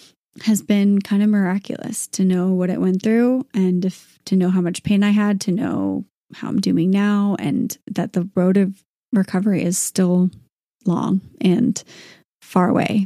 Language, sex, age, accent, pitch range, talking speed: English, female, 30-49, American, 185-220 Hz, 170 wpm